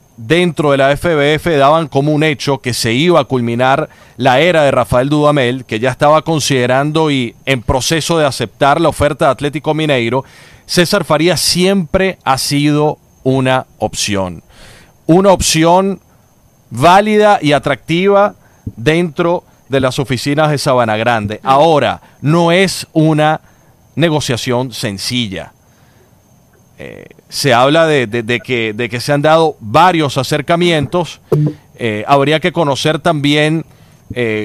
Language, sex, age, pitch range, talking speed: Spanish, male, 40-59, 125-160 Hz, 130 wpm